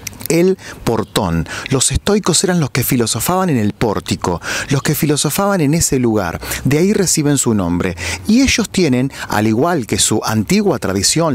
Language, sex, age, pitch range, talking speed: Spanish, male, 40-59, 110-185 Hz, 165 wpm